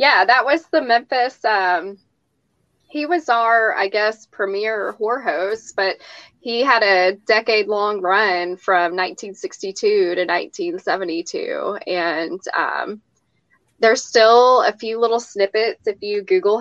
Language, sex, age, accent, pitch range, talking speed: English, female, 20-39, American, 195-245 Hz, 120 wpm